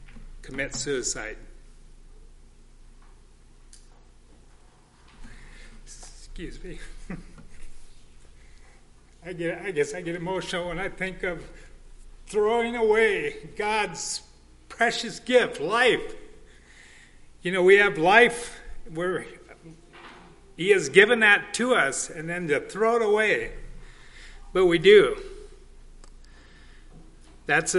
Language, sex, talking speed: English, male, 90 wpm